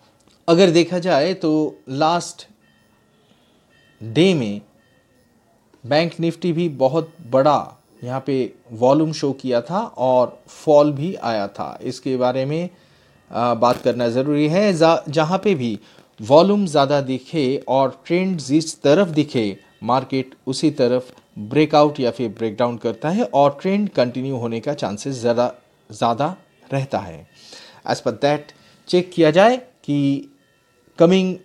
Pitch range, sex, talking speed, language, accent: 130-165 Hz, male, 130 wpm, Hindi, native